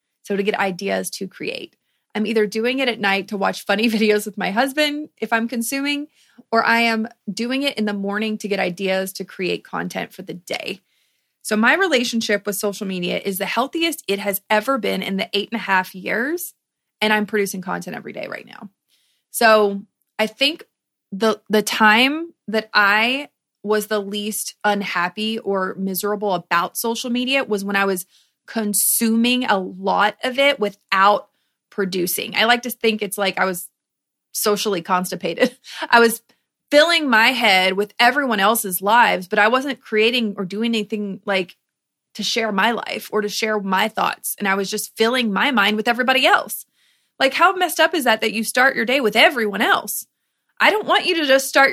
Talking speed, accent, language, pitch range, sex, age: 190 wpm, American, English, 200-250 Hz, female, 30-49